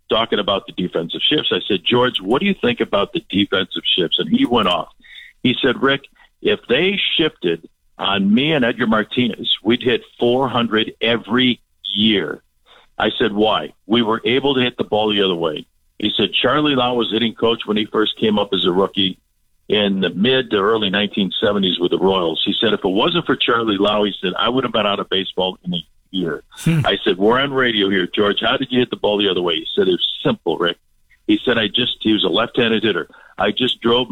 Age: 50-69